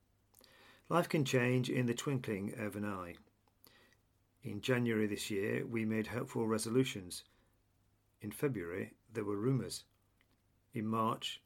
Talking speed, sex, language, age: 125 wpm, male, English, 50-69